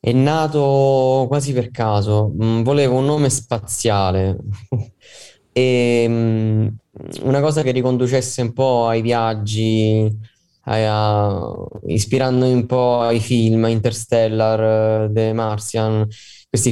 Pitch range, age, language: 105-125 Hz, 20-39, Italian